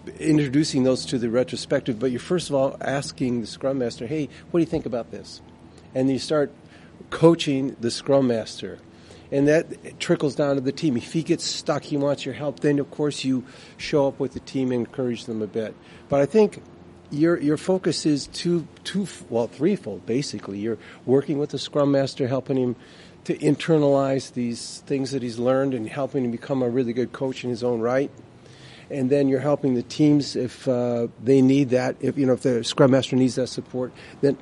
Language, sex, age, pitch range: English, male, 50-69, 120-145 Hz